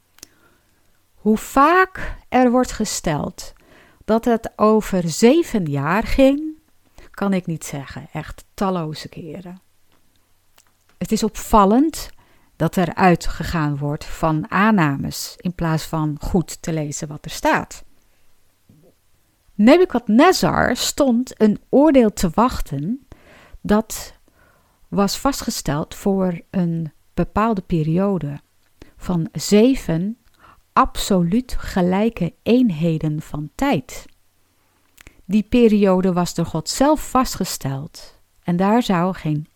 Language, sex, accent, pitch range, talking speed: Dutch, female, Dutch, 155-220 Hz, 105 wpm